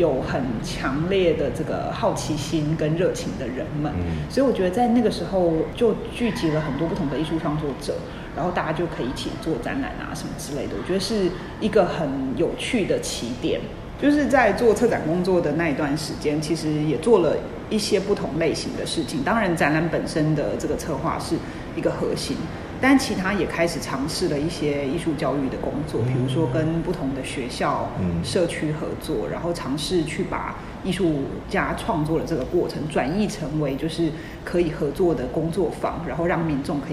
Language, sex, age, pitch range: Chinese, female, 30-49, 150-185 Hz